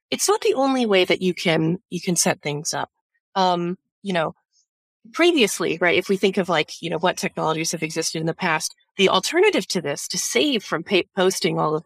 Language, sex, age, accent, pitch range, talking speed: English, female, 30-49, American, 165-220 Hz, 220 wpm